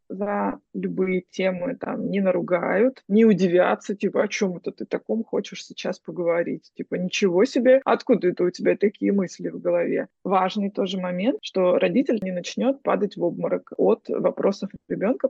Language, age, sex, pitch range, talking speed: Russian, 20-39, female, 185-225 Hz, 160 wpm